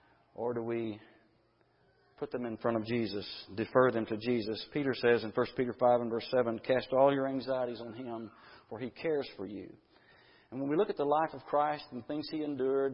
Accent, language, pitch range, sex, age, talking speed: American, English, 115-140 Hz, male, 40-59, 215 wpm